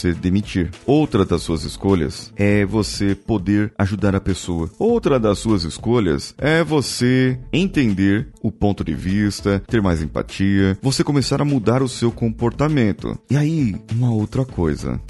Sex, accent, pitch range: male, Brazilian, 95-135 Hz